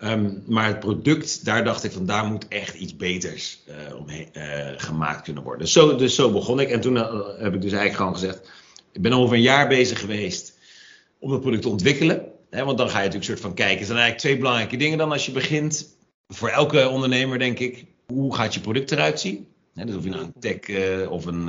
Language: Dutch